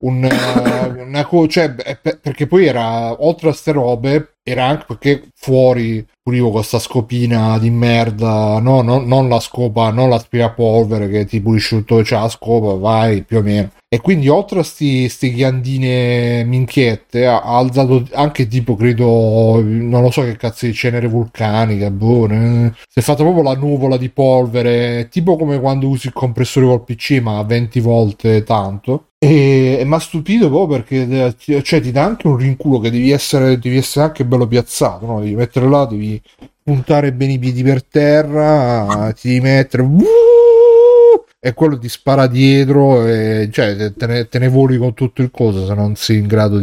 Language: Italian